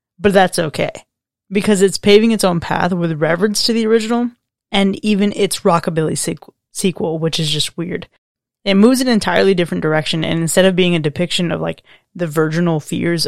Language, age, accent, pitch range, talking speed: English, 20-39, American, 165-200 Hz, 185 wpm